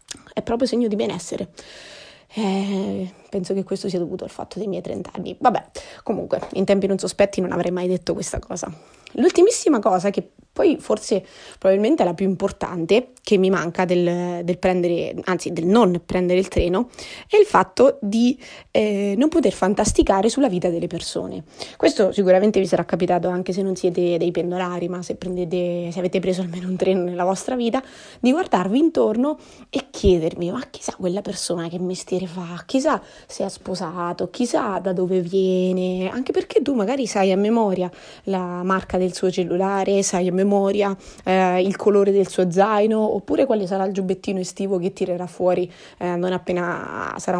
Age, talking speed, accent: 20-39, 175 wpm, native